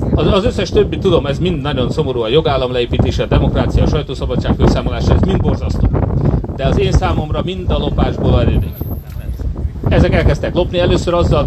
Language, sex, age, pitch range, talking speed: Hungarian, male, 30-49, 100-140 Hz, 170 wpm